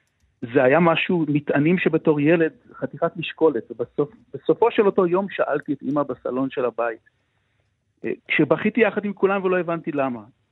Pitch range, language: 135-180 Hz, Hebrew